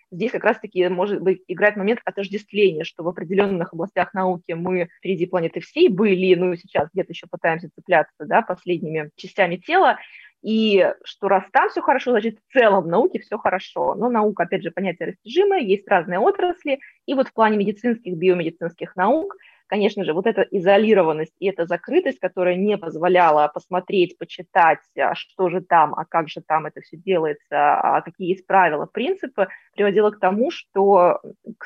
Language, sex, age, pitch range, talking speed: Russian, female, 20-39, 180-215 Hz, 170 wpm